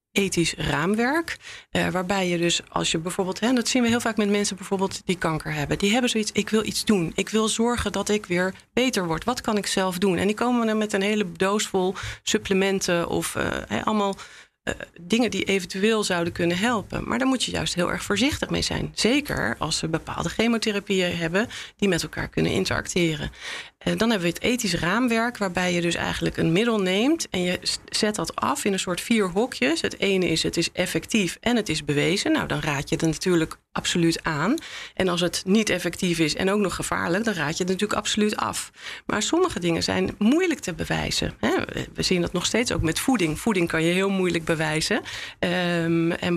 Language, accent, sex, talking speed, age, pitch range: Dutch, Dutch, female, 210 wpm, 40-59, 175-220 Hz